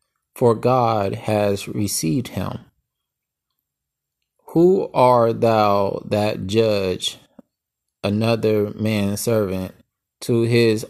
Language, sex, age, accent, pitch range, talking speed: English, male, 20-39, American, 100-115 Hz, 85 wpm